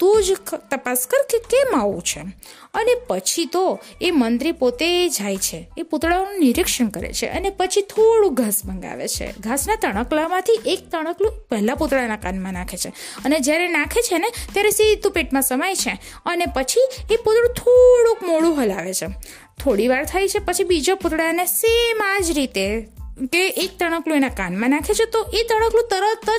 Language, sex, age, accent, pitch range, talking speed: Gujarati, female, 20-39, native, 265-415 Hz, 50 wpm